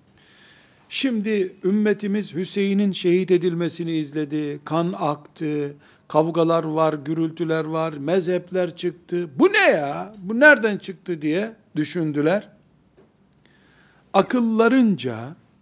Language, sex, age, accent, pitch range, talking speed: Turkish, male, 60-79, native, 160-210 Hz, 90 wpm